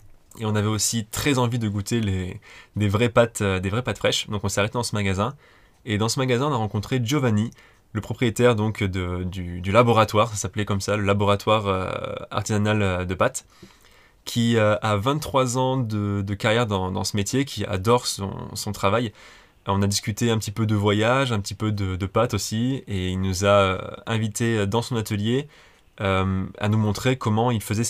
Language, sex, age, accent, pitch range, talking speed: French, male, 20-39, French, 100-115 Hz, 200 wpm